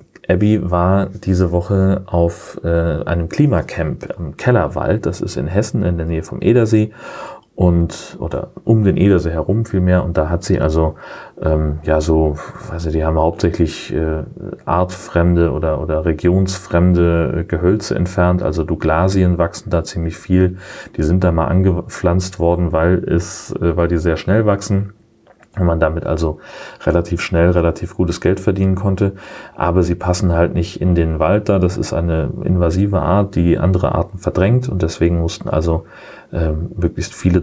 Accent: German